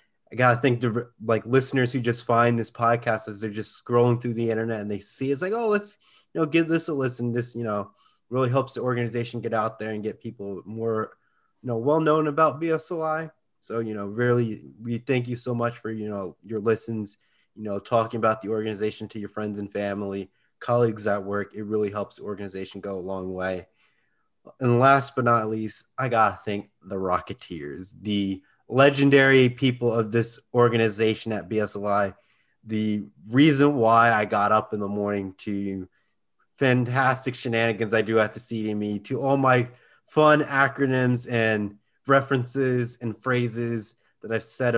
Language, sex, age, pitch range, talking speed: English, male, 20-39, 105-125 Hz, 185 wpm